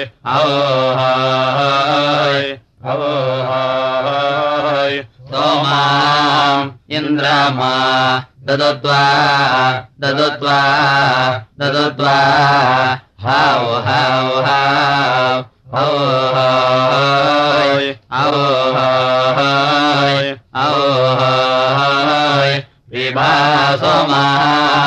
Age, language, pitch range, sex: 30-49, Russian, 130-140 Hz, male